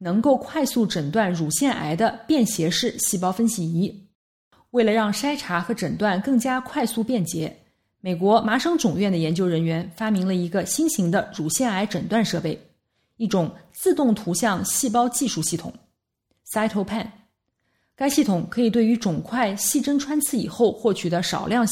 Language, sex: Chinese, female